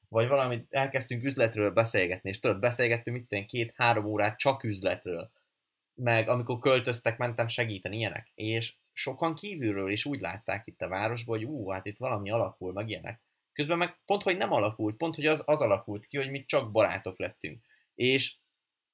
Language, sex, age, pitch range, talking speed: Hungarian, male, 20-39, 105-140 Hz, 170 wpm